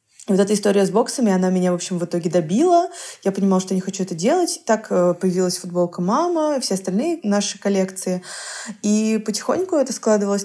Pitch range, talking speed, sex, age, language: 175-220 Hz, 195 wpm, female, 20-39, Russian